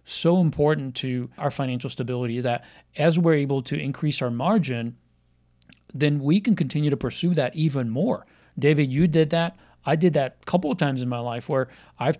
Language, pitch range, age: English, 130-160 Hz, 40-59